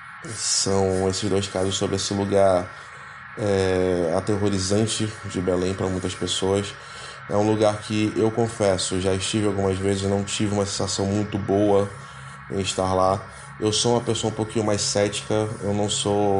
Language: Portuguese